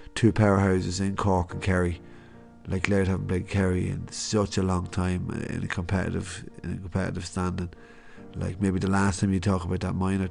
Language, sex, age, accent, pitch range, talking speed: English, male, 30-49, Irish, 95-115 Hz, 190 wpm